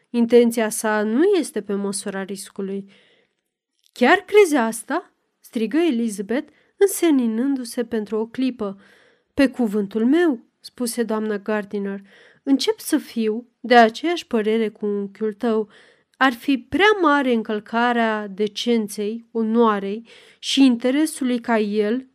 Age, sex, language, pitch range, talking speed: 30-49, female, Romanian, 220-275 Hz, 115 wpm